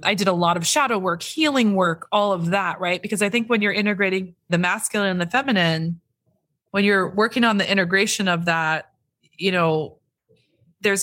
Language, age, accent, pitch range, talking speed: English, 20-39, American, 170-210 Hz, 190 wpm